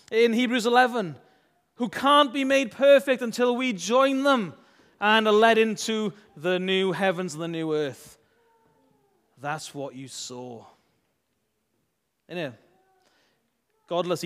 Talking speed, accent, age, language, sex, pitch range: 120 wpm, British, 30-49, English, male, 145-225 Hz